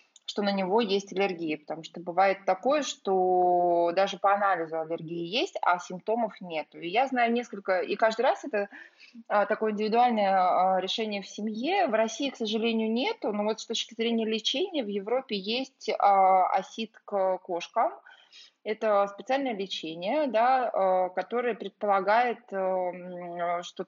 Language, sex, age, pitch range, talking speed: Russian, female, 20-39, 175-225 Hz, 135 wpm